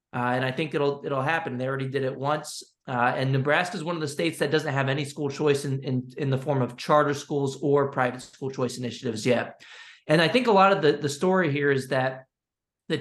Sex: male